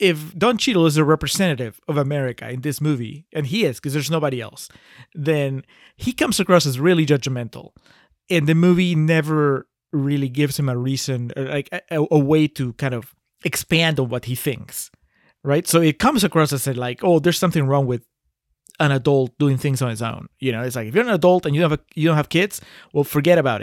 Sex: male